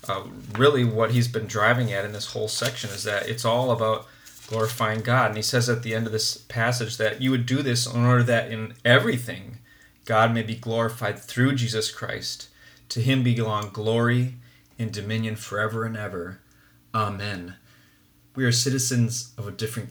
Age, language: 30-49, English